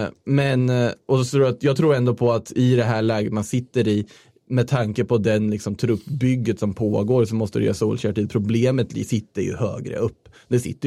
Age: 20-39